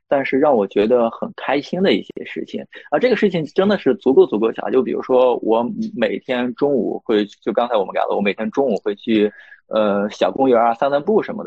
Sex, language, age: male, Chinese, 20-39